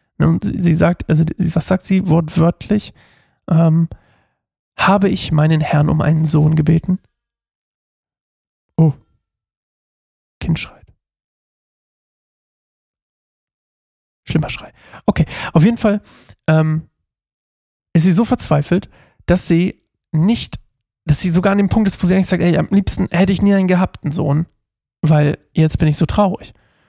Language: German